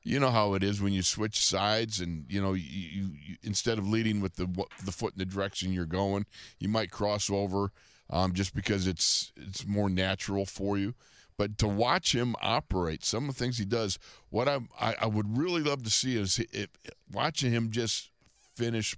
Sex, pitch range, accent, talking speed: male, 95-115 Hz, American, 210 wpm